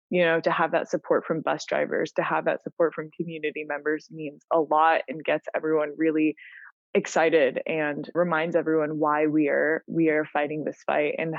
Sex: female